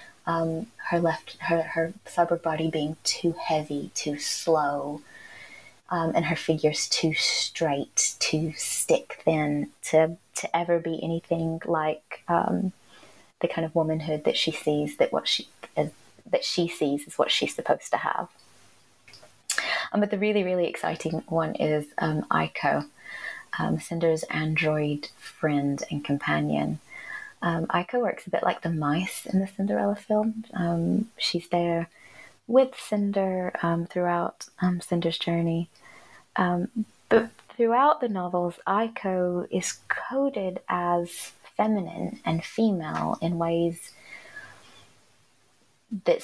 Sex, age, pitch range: female, 20-39, 155-180 Hz